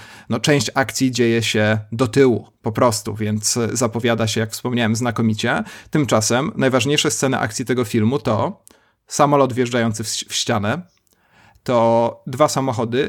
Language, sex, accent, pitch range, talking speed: Polish, male, native, 110-135 Hz, 130 wpm